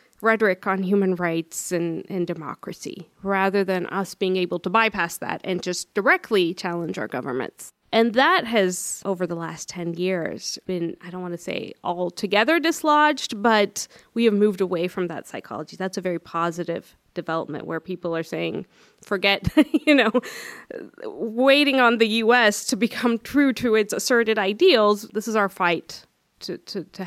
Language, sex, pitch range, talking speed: English, female, 185-235 Hz, 165 wpm